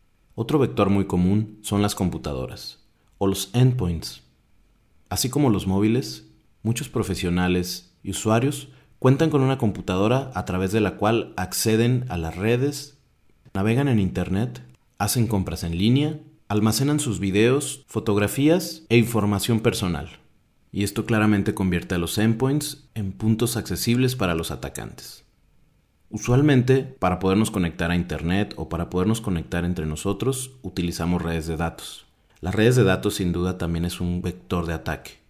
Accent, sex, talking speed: Mexican, male, 145 wpm